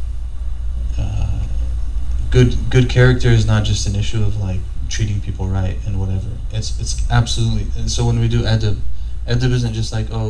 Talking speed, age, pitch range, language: 175 wpm, 20-39, 95-110 Hz, English